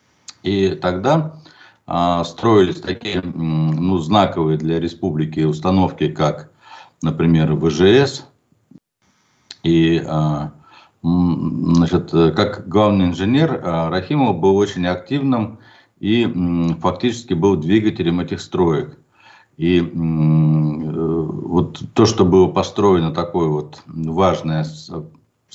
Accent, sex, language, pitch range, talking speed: native, male, Russian, 80-110 Hz, 85 wpm